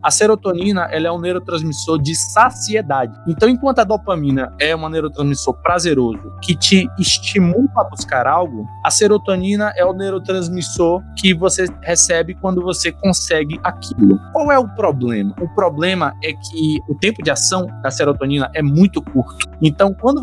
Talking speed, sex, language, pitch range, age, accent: 155 wpm, male, Portuguese, 145-195 Hz, 20-39, Brazilian